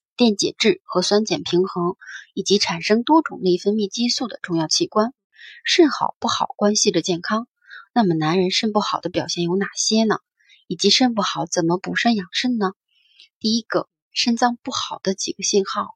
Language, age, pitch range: Chinese, 20-39, 175-235 Hz